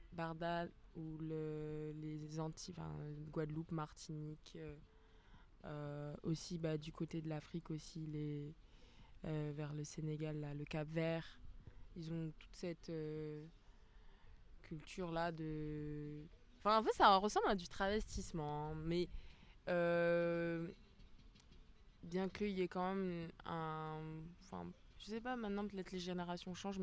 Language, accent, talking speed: French, French, 130 wpm